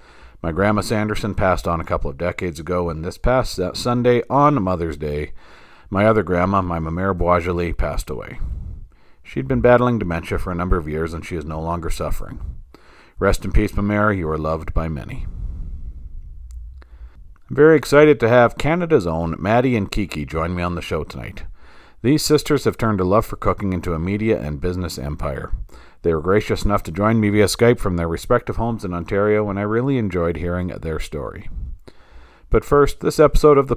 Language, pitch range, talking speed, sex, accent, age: English, 85-110 Hz, 190 wpm, male, American, 40-59